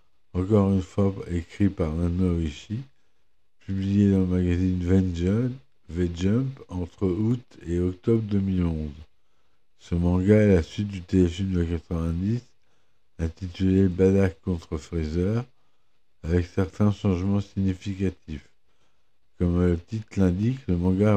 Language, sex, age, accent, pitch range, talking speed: French, male, 60-79, French, 90-100 Hz, 120 wpm